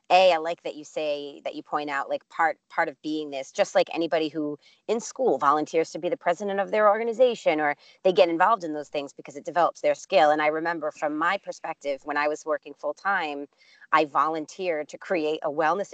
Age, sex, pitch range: 30-49, female, 145-175 Hz